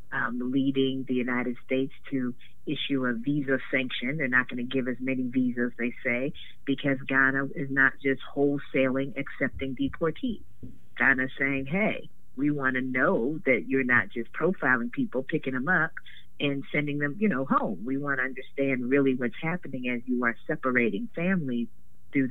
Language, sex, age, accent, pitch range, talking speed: English, female, 50-69, American, 125-150 Hz, 170 wpm